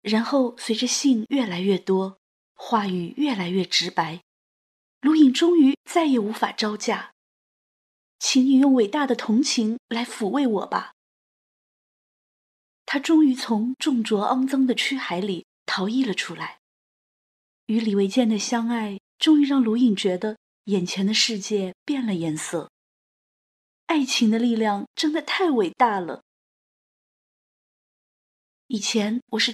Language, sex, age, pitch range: Chinese, female, 20-39, 205-265 Hz